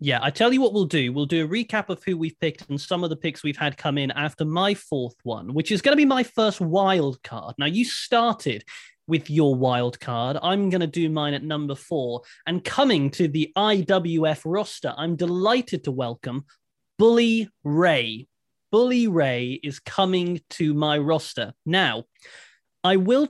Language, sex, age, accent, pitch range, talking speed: English, male, 20-39, British, 145-195 Hz, 190 wpm